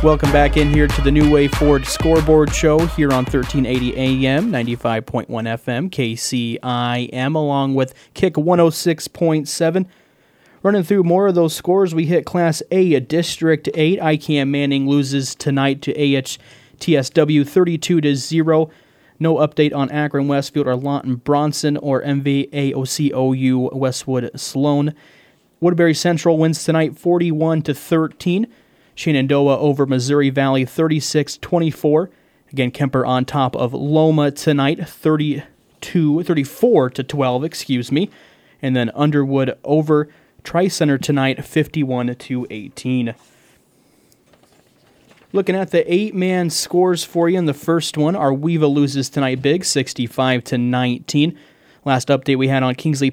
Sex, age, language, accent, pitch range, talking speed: male, 30-49, English, American, 130-160 Hz, 115 wpm